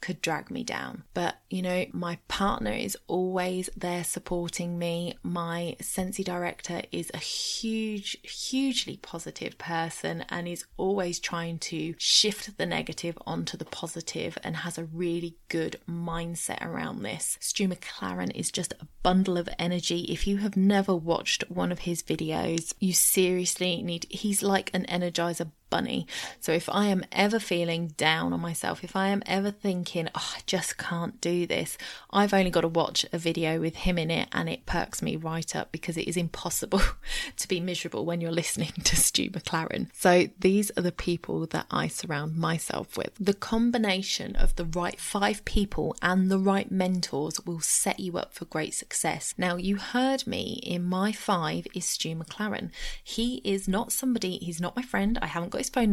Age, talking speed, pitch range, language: 20-39, 180 wpm, 170-200 Hz, English